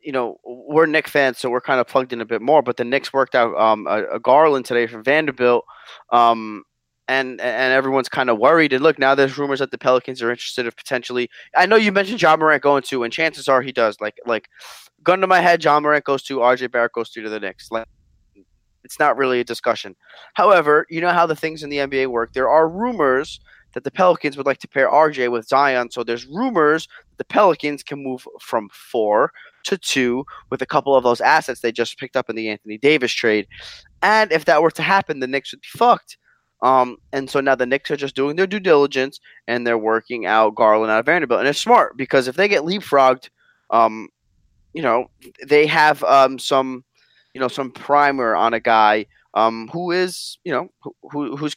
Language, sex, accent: English, male, American